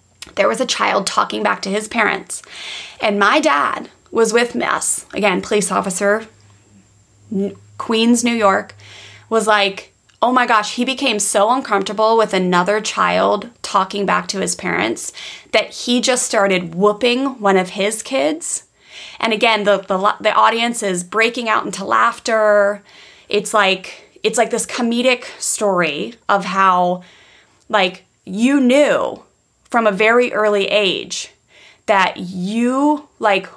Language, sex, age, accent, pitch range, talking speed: English, female, 20-39, American, 195-245 Hz, 145 wpm